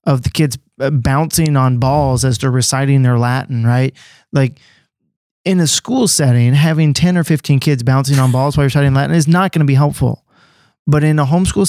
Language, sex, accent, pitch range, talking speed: English, male, American, 125-145 Hz, 195 wpm